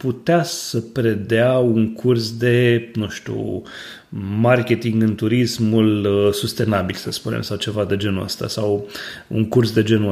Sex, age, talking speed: male, 30-49, 140 wpm